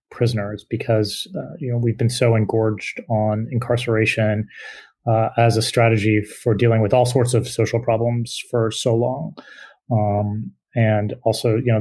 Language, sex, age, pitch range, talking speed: English, male, 30-49, 110-130 Hz, 160 wpm